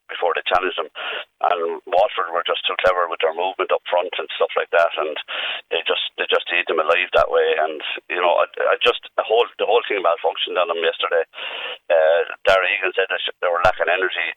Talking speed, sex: 225 wpm, male